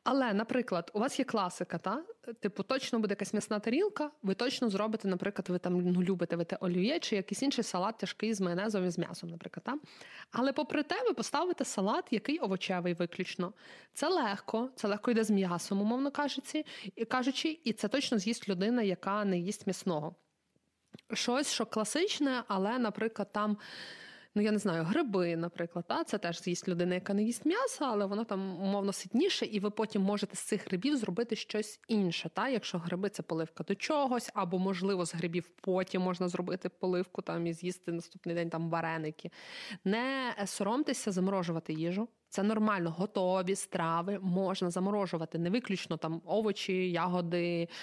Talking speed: 170 wpm